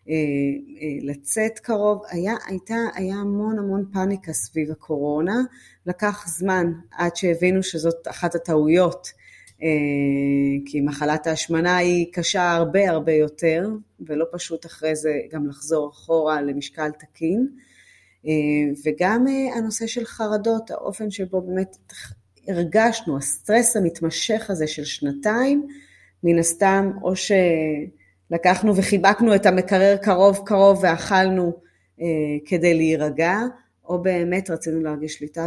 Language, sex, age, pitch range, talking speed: Hebrew, female, 30-49, 150-190 Hz, 110 wpm